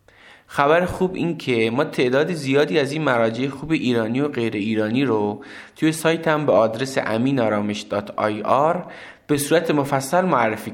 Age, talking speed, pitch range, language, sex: 20-39, 150 wpm, 115-150 Hz, Persian, male